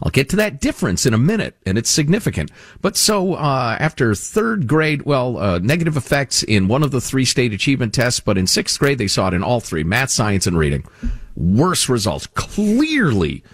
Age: 50-69